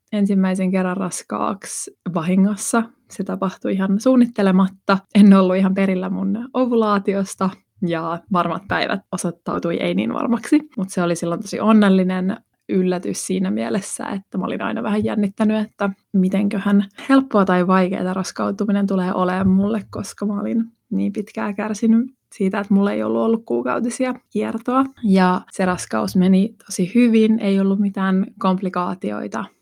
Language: Finnish